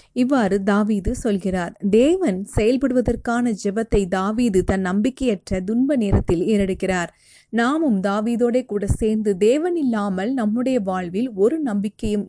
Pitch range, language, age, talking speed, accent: 195-240 Hz, Tamil, 30-49, 105 wpm, native